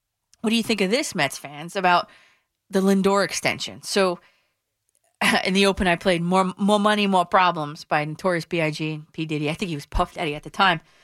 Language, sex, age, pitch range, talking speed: English, female, 30-49, 170-225 Hz, 205 wpm